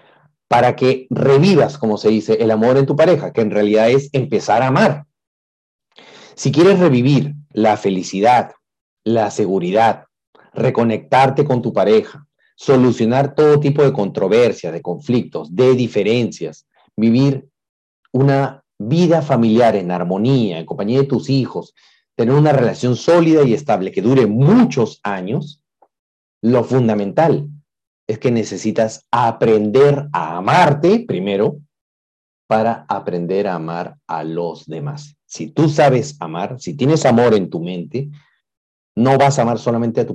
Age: 40-59